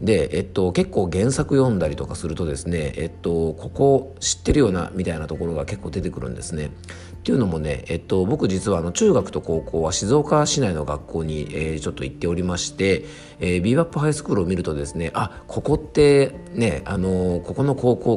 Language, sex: Japanese, male